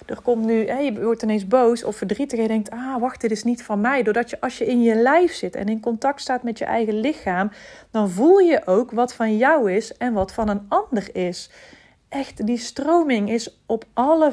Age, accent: 40-59, Dutch